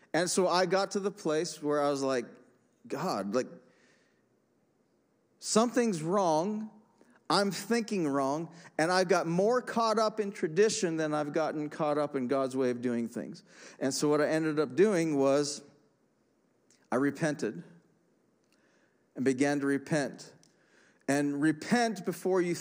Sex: male